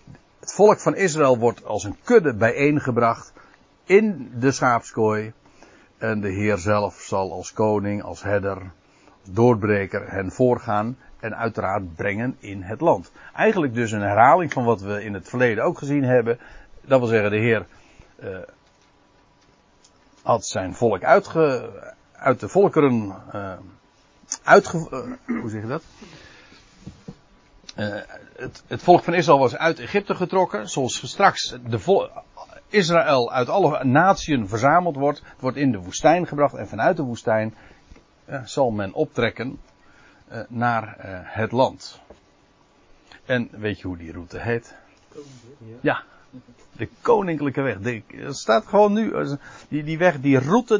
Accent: Dutch